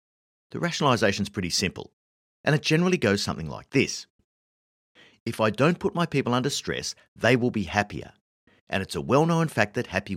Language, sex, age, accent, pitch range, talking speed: English, male, 50-69, Australian, 85-140 Hz, 185 wpm